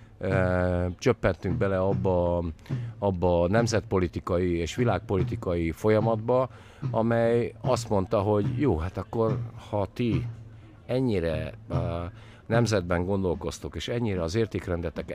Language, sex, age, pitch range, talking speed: Hungarian, male, 50-69, 85-110 Hz, 100 wpm